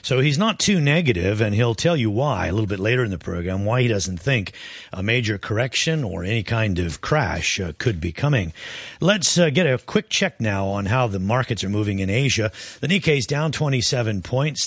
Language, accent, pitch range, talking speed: English, American, 100-140 Hz, 215 wpm